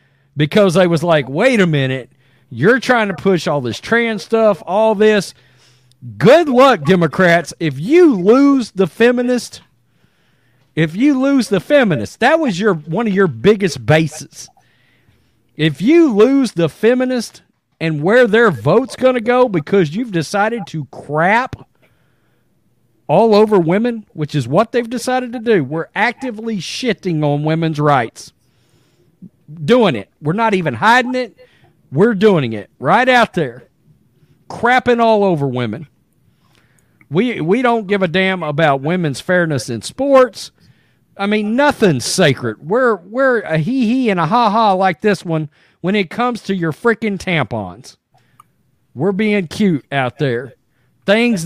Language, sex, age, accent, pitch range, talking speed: English, male, 40-59, American, 145-225 Hz, 150 wpm